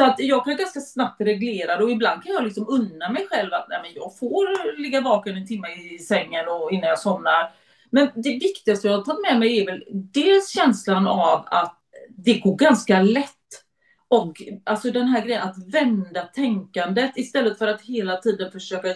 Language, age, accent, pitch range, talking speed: Swedish, 30-49, native, 200-270 Hz, 195 wpm